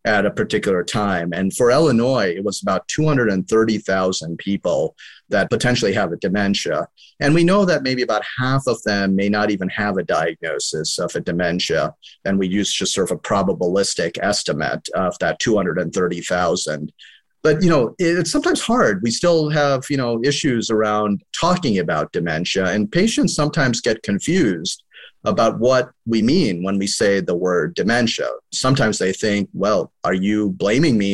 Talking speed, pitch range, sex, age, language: 165 wpm, 100-145 Hz, male, 40-59, English